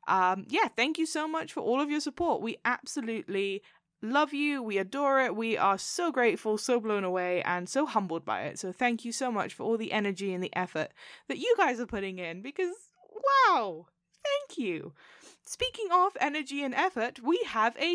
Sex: female